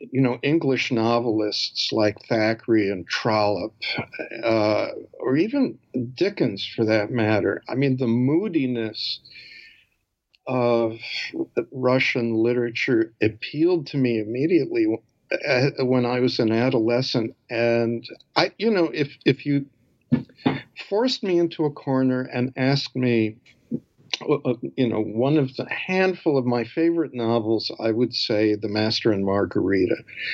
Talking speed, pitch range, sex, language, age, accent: 125 wpm, 115-165 Hz, male, English, 50-69, American